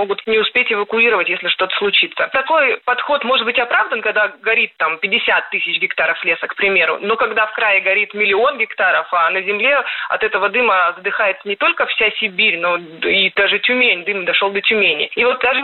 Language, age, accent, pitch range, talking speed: Russian, 20-39, native, 200-265 Hz, 190 wpm